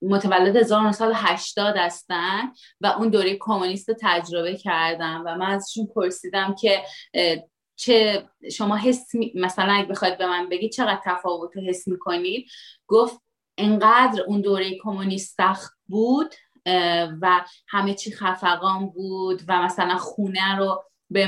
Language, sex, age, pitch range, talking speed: Persian, female, 30-49, 180-220 Hz, 125 wpm